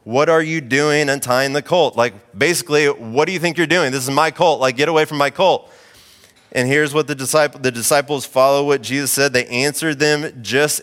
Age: 30-49